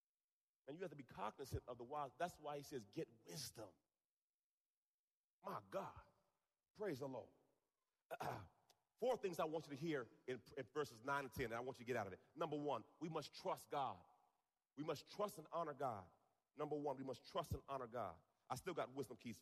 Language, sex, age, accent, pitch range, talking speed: English, male, 40-59, American, 130-160 Hz, 205 wpm